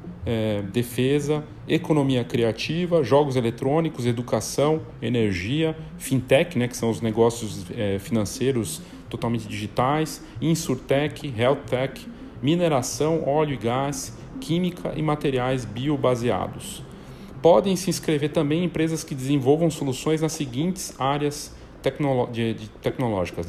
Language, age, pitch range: Portuguese, 40-59, 115-155 Hz